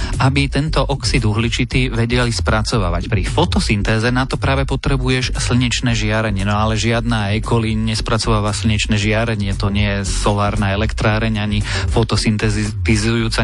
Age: 30-49